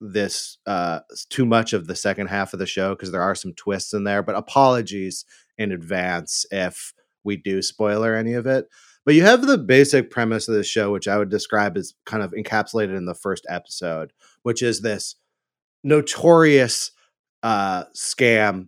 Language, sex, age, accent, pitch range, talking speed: English, male, 30-49, American, 100-130 Hz, 180 wpm